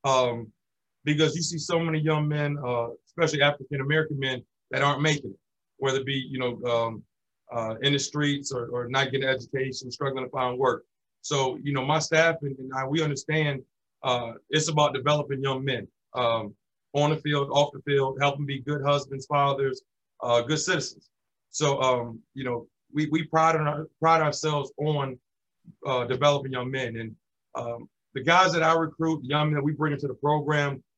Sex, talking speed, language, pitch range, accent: male, 190 wpm, English, 135-155 Hz, American